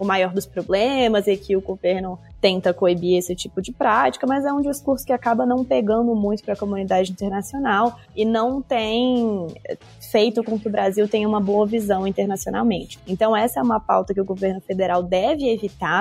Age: 20-39